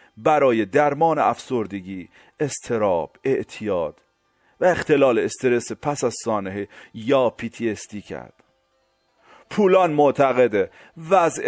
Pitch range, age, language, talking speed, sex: 110-155 Hz, 40-59, Persian, 90 wpm, male